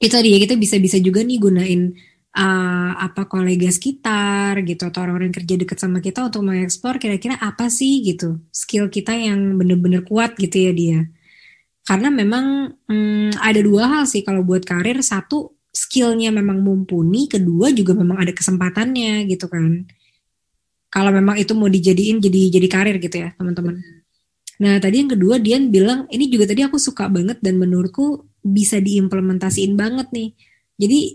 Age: 20-39